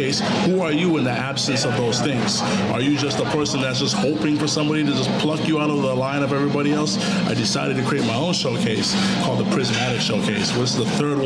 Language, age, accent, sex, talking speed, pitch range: English, 30-49, American, male, 245 wpm, 120-150 Hz